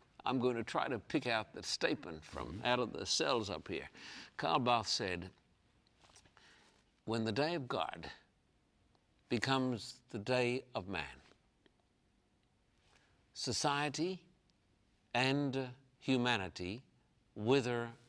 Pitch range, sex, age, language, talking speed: 105-135 Hz, male, 60-79, English, 110 wpm